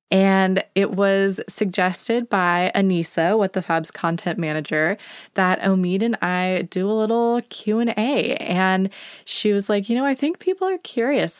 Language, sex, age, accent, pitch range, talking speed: English, female, 20-39, American, 170-215 Hz, 160 wpm